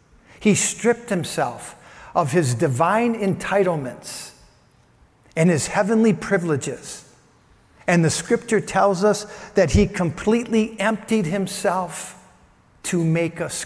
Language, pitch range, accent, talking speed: English, 165-210 Hz, American, 105 wpm